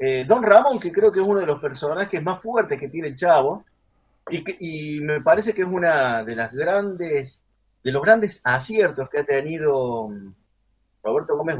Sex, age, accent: male, 30-49, Argentinian